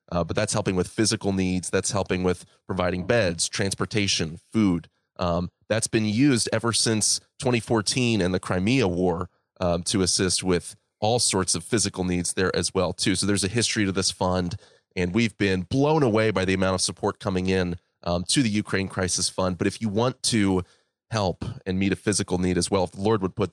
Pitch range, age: 90-110 Hz, 30-49